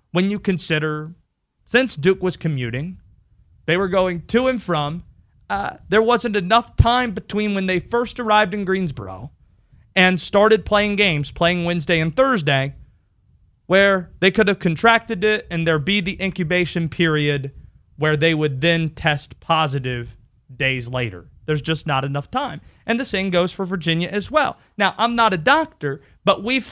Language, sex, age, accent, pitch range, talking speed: English, male, 30-49, American, 155-225 Hz, 165 wpm